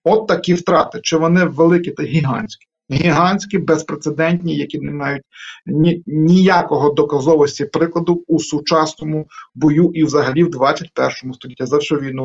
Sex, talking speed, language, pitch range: male, 130 wpm, Ukrainian, 145-170 Hz